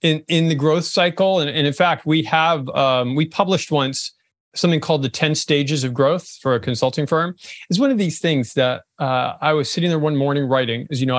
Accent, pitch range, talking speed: American, 135-180 Hz, 230 wpm